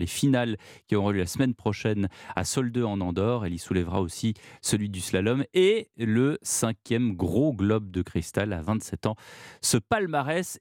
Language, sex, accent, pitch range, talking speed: French, male, French, 105-150 Hz, 175 wpm